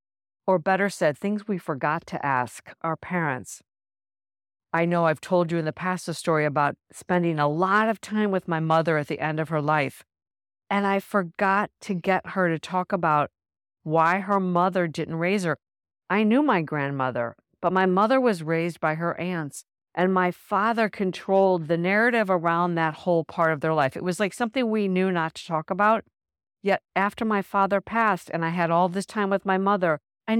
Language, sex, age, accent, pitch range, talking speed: English, female, 50-69, American, 155-200 Hz, 195 wpm